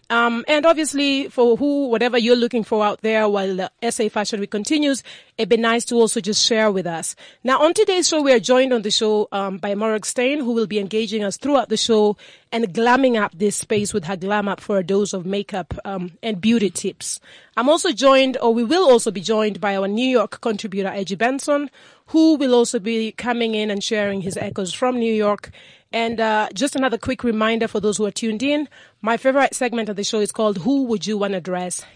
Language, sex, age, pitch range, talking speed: English, female, 30-49, 205-245 Hz, 225 wpm